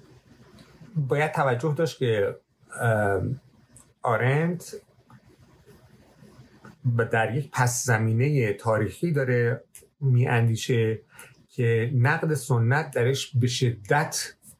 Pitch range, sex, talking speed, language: 105-135 Hz, male, 75 wpm, Persian